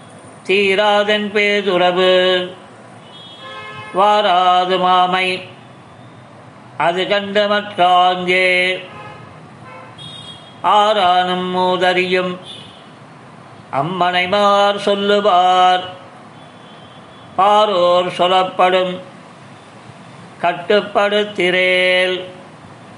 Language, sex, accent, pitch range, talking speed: Tamil, male, native, 180-205 Hz, 35 wpm